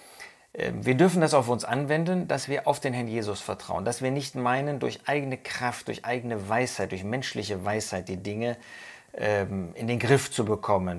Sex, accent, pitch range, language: male, German, 105-135 Hz, German